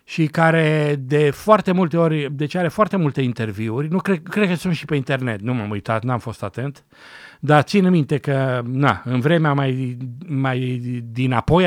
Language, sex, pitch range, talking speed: Romanian, male, 130-170 Hz, 190 wpm